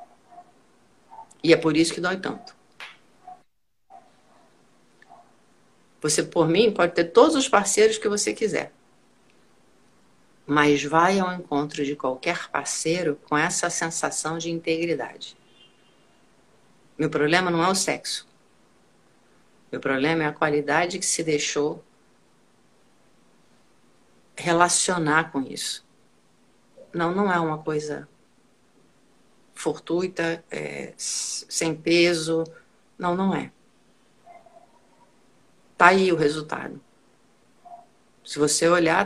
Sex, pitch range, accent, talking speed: female, 155-180 Hz, Brazilian, 100 wpm